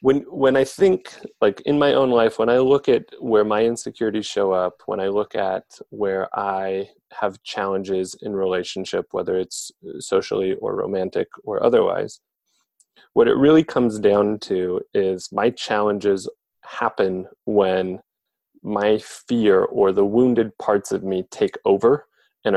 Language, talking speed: English, 150 wpm